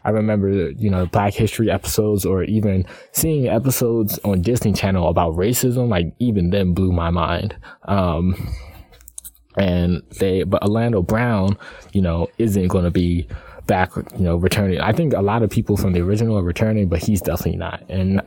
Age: 20-39